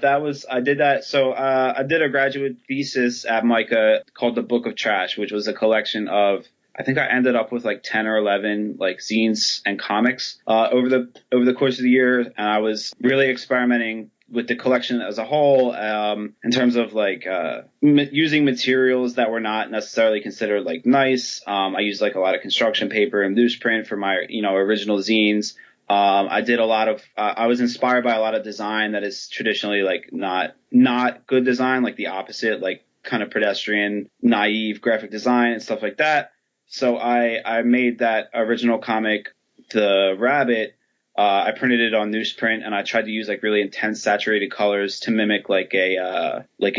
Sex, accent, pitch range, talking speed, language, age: male, American, 105-125 Hz, 205 wpm, English, 20-39